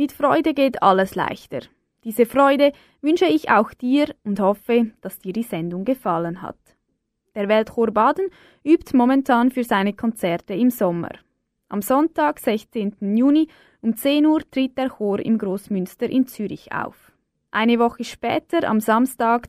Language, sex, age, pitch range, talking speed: German, female, 20-39, 205-270 Hz, 150 wpm